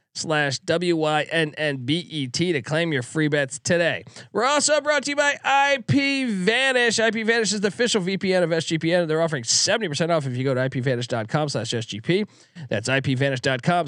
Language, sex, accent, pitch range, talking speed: English, male, American, 140-205 Hz, 195 wpm